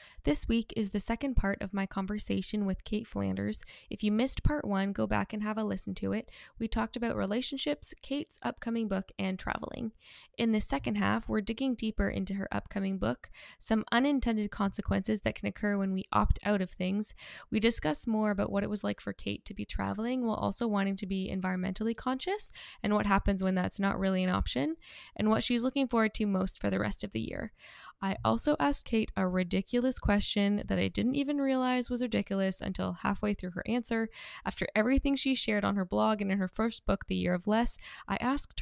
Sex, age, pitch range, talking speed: female, 10-29, 190-230 Hz, 210 wpm